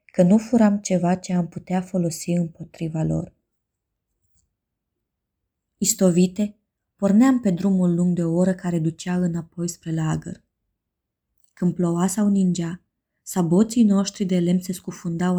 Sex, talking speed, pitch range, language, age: female, 130 wpm, 170-195 Hz, Romanian, 20-39